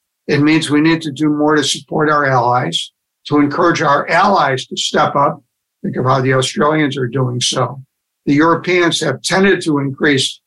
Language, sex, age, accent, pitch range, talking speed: English, male, 60-79, American, 135-165 Hz, 185 wpm